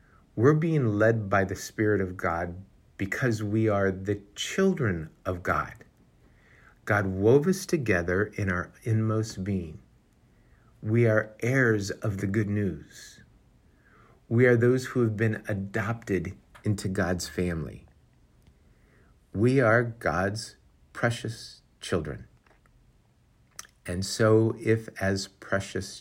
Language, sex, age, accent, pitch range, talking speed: English, male, 50-69, American, 95-115 Hz, 115 wpm